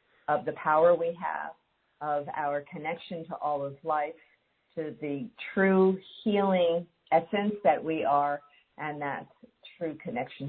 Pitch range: 145-195 Hz